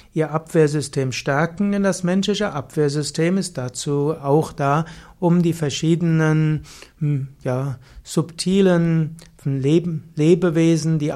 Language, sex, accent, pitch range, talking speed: German, male, German, 145-175 Hz, 95 wpm